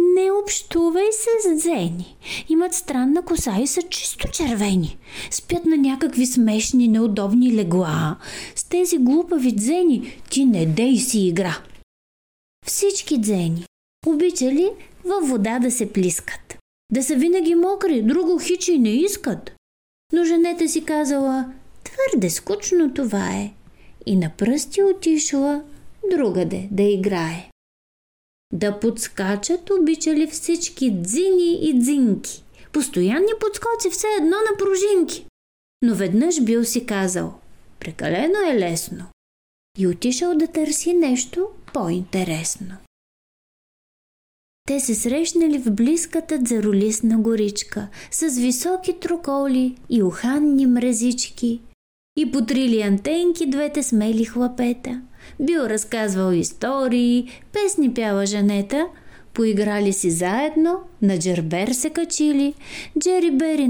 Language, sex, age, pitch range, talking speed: Bulgarian, female, 30-49, 215-335 Hz, 110 wpm